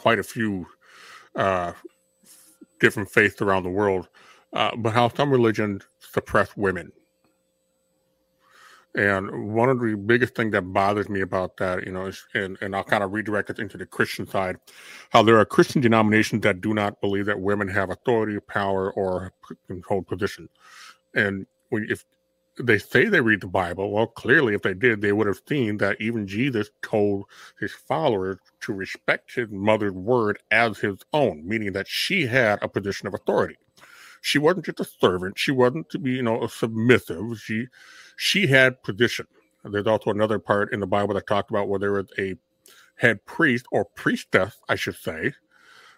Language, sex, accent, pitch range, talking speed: English, male, American, 100-115 Hz, 180 wpm